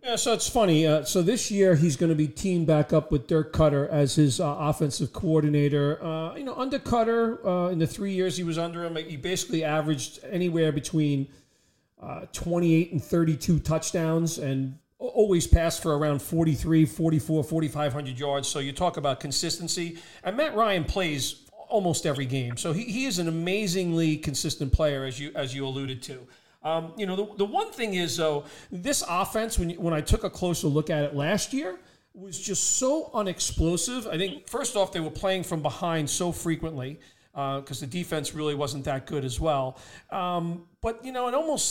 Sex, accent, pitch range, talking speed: male, American, 150-190 Hz, 195 wpm